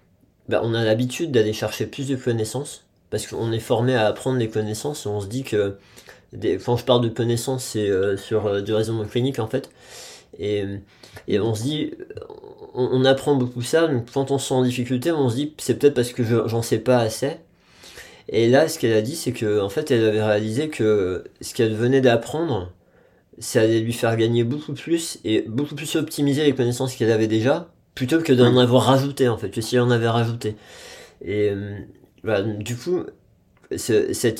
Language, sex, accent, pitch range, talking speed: French, male, French, 105-130 Hz, 210 wpm